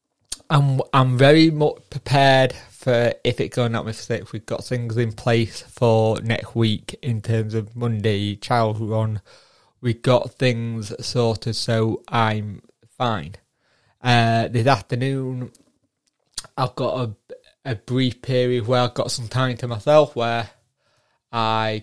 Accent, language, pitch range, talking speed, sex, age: British, English, 115-135 Hz, 140 wpm, male, 20-39